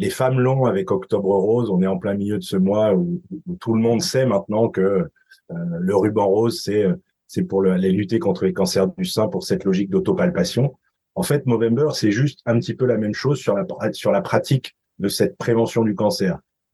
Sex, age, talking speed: male, 30-49, 215 wpm